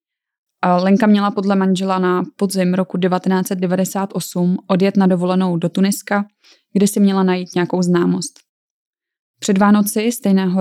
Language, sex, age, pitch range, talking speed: Czech, female, 20-39, 180-200 Hz, 125 wpm